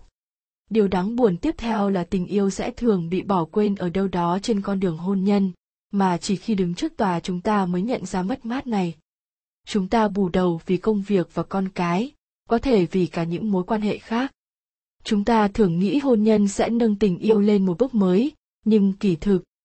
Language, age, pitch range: Vietnamese, 20-39, 185-225 Hz